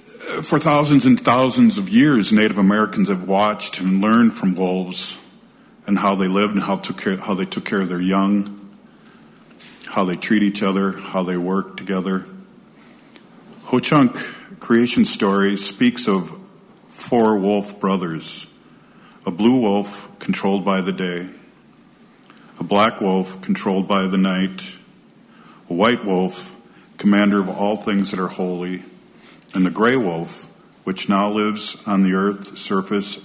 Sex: male